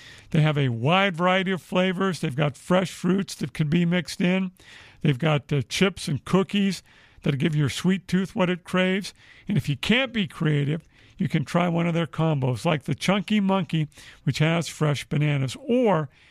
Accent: American